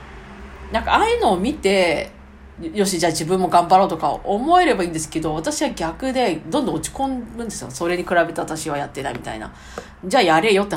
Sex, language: female, Japanese